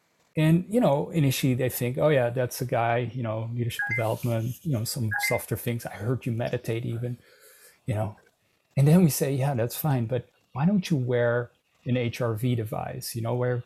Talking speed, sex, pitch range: 200 wpm, male, 120-150 Hz